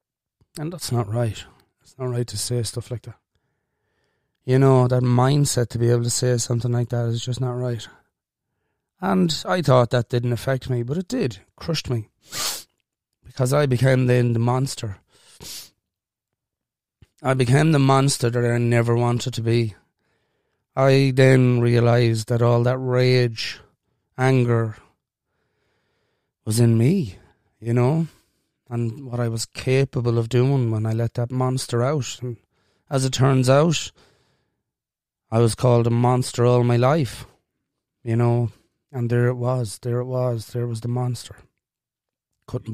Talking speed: 155 wpm